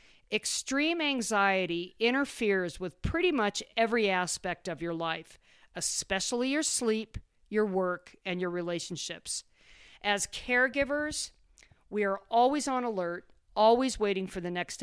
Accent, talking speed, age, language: American, 125 wpm, 50-69, English